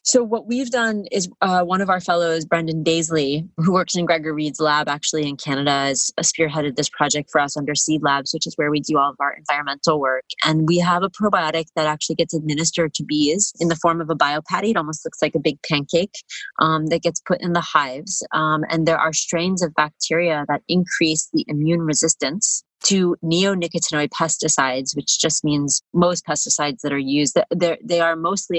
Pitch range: 145-170 Hz